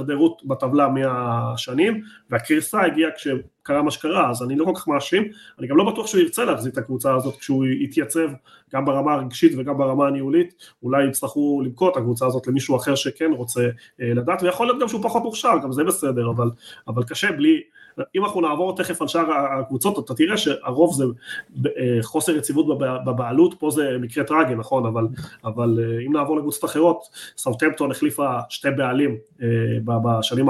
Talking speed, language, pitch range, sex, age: 165 wpm, Hebrew, 130-175 Hz, male, 30-49